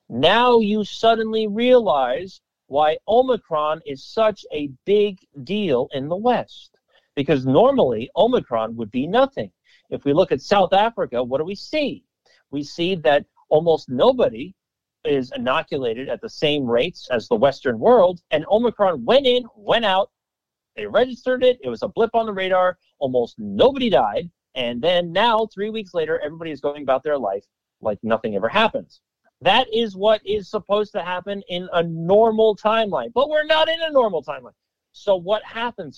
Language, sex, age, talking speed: English, male, 50-69, 170 wpm